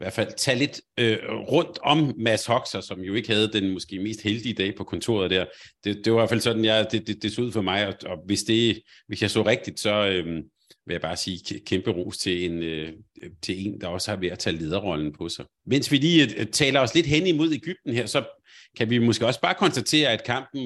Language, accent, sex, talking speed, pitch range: Danish, native, male, 250 wpm, 105-130 Hz